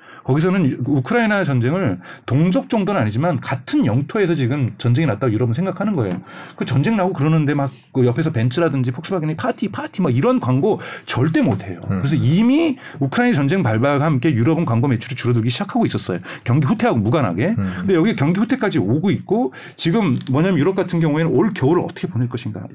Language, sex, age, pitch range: Korean, male, 40-59, 130-195 Hz